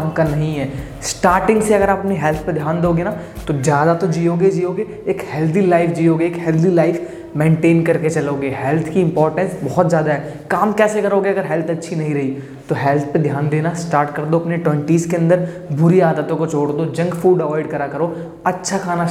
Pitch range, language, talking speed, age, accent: 150-180 Hz, Hindi, 200 wpm, 20-39, native